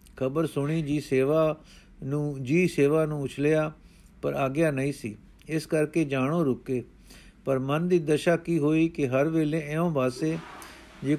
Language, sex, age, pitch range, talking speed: Punjabi, male, 50-69, 140-165 Hz, 155 wpm